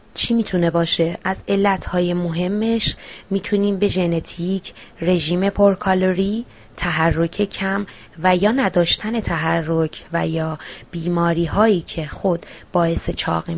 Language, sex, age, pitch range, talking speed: Persian, female, 20-39, 165-190 Hz, 110 wpm